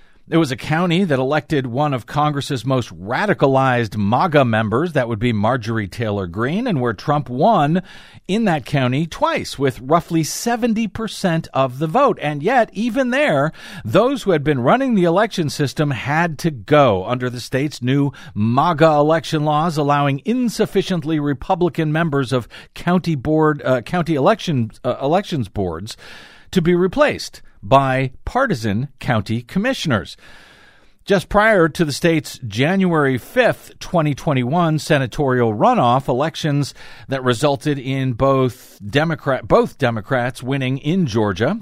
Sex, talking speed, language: male, 140 wpm, English